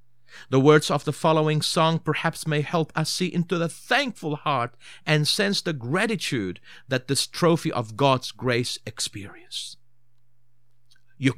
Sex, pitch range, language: male, 120-170 Hz, English